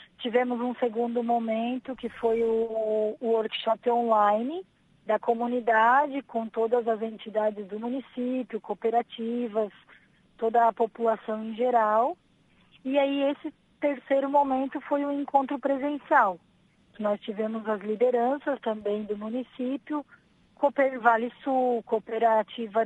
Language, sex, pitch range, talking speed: Portuguese, female, 225-275 Hz, 115 wpm